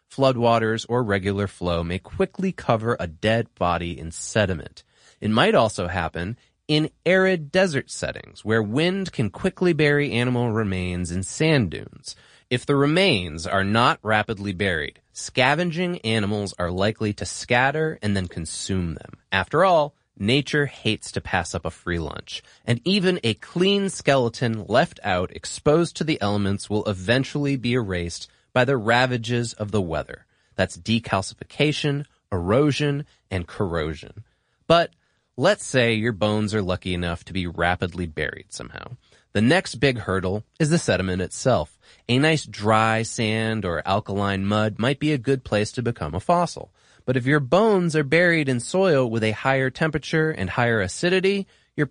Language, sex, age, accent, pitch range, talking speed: English, male, 30-49, American, 95-145 Hz, 155 wpm